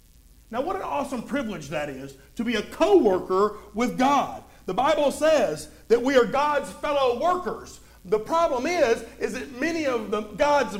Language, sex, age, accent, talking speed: English, male, 50-69, American, 165 wpm